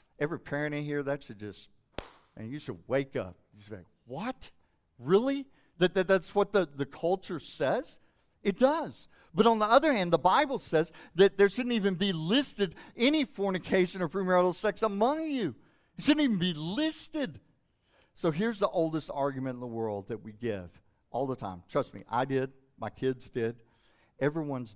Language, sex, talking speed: English, male, 185 wpm